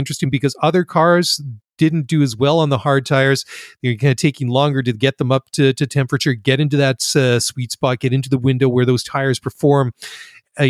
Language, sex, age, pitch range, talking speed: English, male, 30-49, 125-155 Hz, 235 wpm